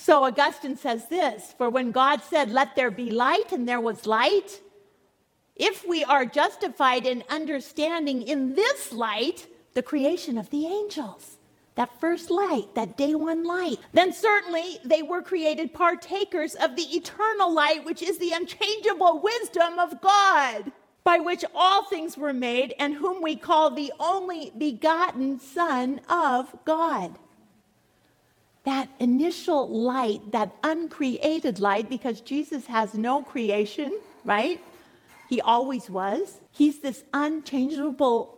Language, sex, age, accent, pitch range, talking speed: English, female, 40-59, American, 245-335 Hz, 140 wpm